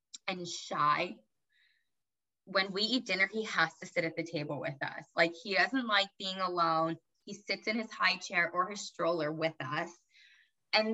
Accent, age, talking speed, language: American, 20-39, 180 wpm, English